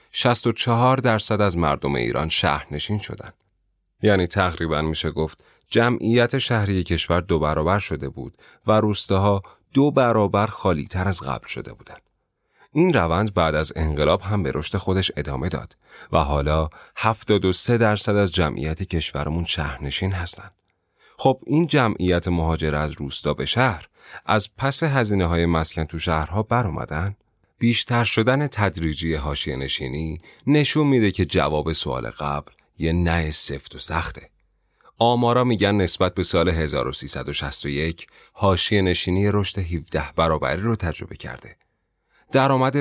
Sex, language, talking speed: male, Persian, 130 wpm